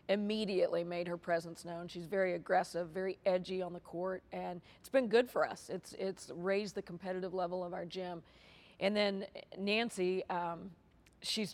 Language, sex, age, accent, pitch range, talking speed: English, female, 40-59, American, 180-200 Hz, 170 wpm